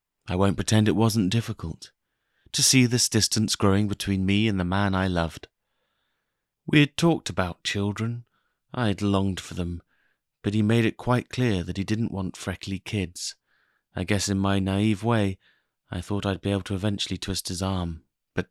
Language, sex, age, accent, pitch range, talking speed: English, male, 30-49, British, 90-110 Hz, 185 wpm